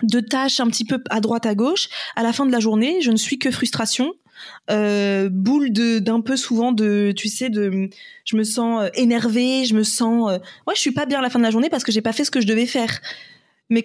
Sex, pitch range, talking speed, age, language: female, 220-265 Hz, 260 wpm, 20-39, French